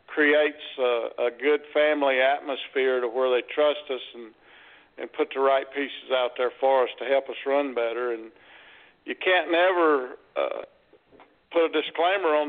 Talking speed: 170 wpm